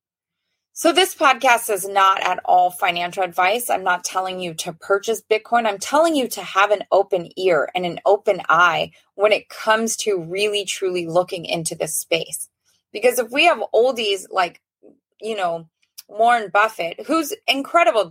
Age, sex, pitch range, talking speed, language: 20-39, female, 185-230 Hz, 165 wpm, English